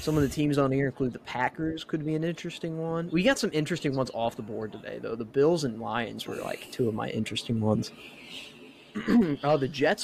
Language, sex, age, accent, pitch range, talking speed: English, male, 20-39, American, 115-140 Hz, 225 wpm